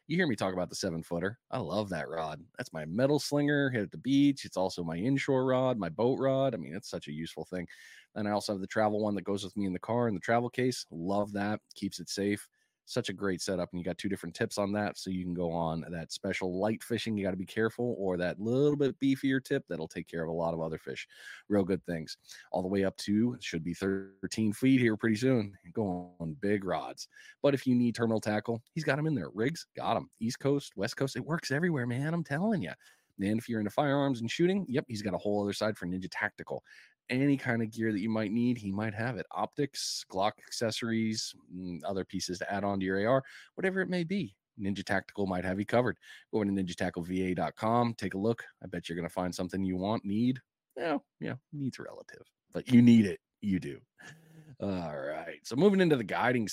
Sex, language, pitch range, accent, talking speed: male, English, 95-130 Hz, American, 240 wpm